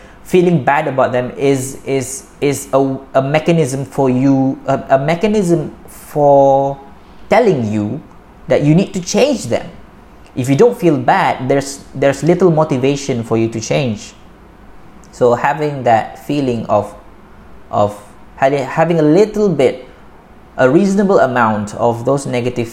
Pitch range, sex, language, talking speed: 110-140 Hz, male, Malay, 140 wpm